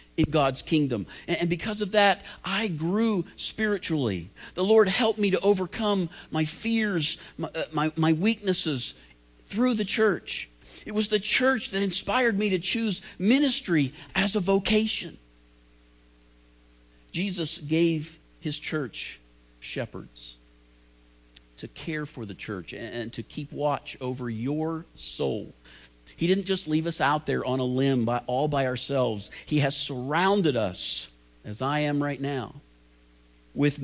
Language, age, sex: English, 50-69, male